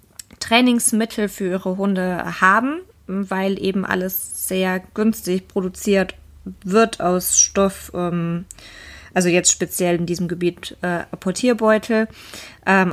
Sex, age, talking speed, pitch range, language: female, 20-39, 110 wpm, 175-200 Hz, German